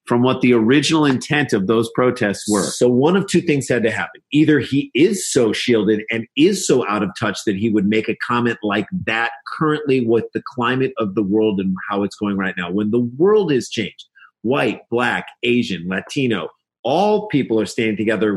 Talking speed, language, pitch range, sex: 205 wpm, English, 110-145 Hz, male